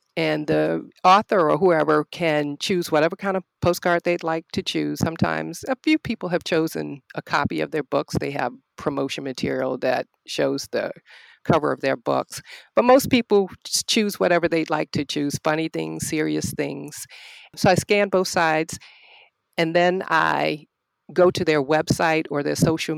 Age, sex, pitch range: 50-69, female, 140-175 Hz